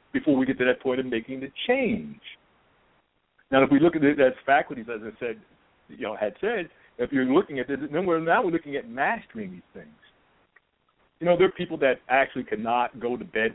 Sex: male